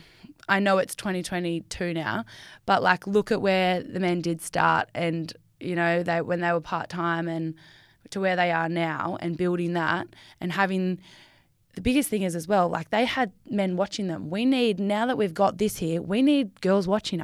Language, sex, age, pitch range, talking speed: English, female, 10-29, 175-215 Hz, 195 wpm